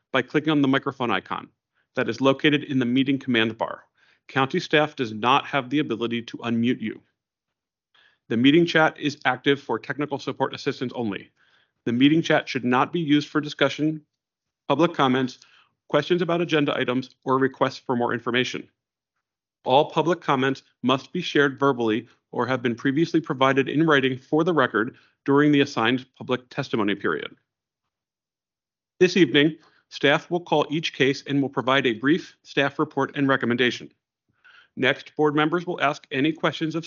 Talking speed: 165 wpm